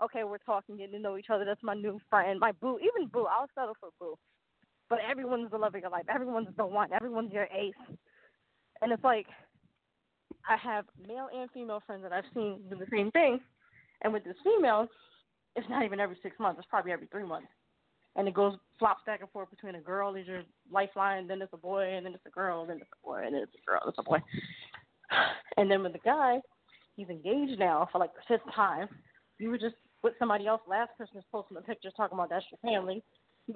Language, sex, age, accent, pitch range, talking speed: English, female, 20-39, American, 190-240 Hz, 230 wpm